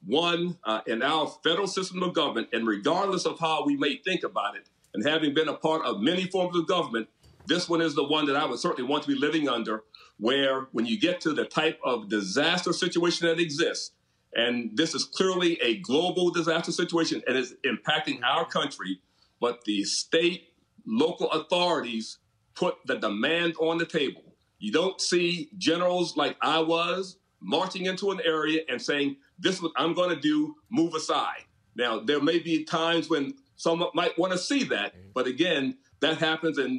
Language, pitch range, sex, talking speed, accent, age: English, 130-175 Hz, male, 190 wpm, American, 40-59